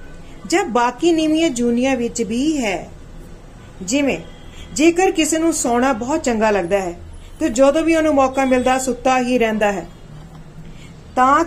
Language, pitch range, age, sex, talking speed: Punjabi, 205-280 Hz, 40-59, female, 140 wpm